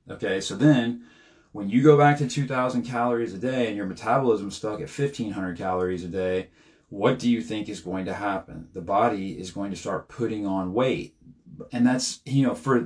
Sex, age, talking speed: male, 30-49, 200 wpm